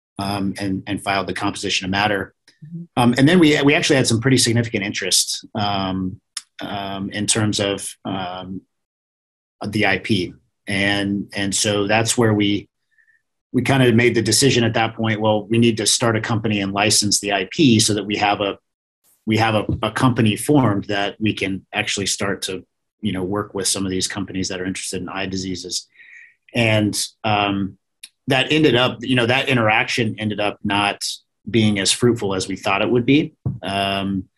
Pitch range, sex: 100-120 Hz, male